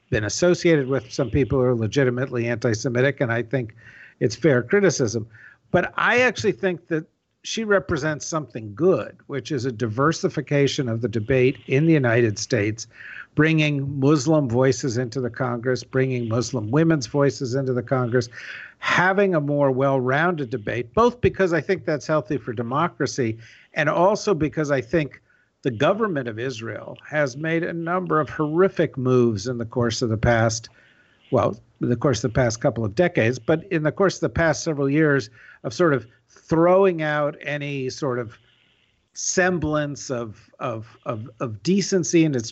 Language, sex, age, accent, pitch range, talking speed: English, male, 50-69, American, 120-155 Hz, 165 wpm